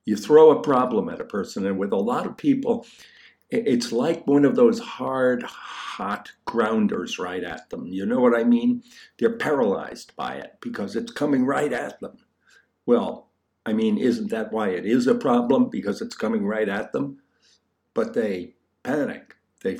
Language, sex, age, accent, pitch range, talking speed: English, male, 60-79, American, 170-245 Hz, 180 wpm